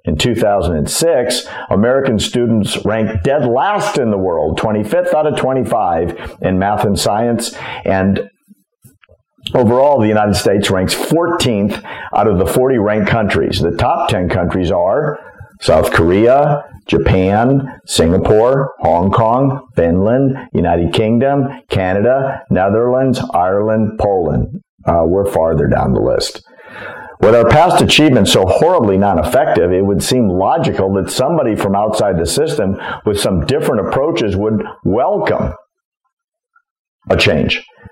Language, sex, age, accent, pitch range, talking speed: English, male, 50-69, American, 100-135 Hz, 125 wpm